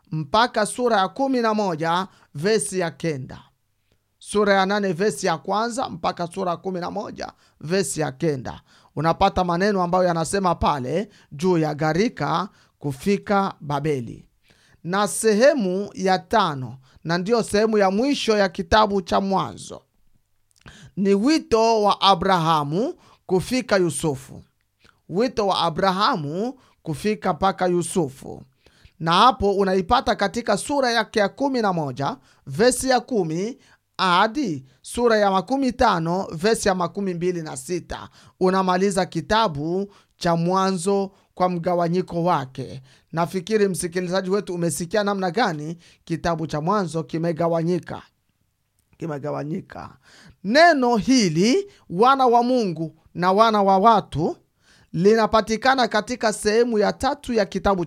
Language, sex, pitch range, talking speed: English, male, 165-215 Hz, 115 wpm